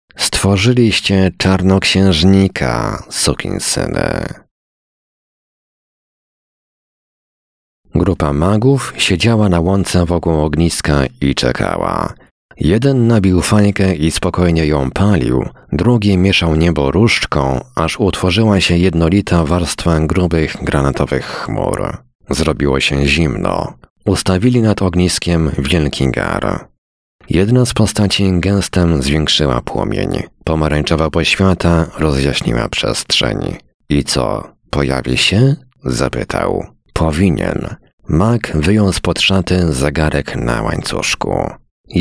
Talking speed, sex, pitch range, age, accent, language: 95 wpm, male, 80-100 Hz, 40-59, native, Polish